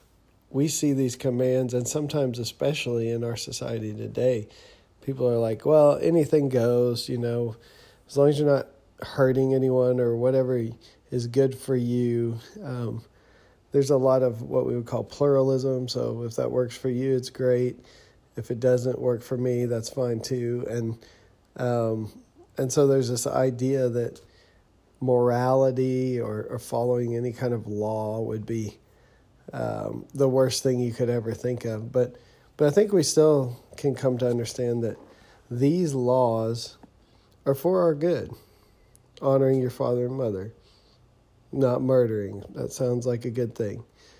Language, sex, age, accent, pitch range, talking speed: English, male, 40-59, American, 115-130 Hz, 155 wpm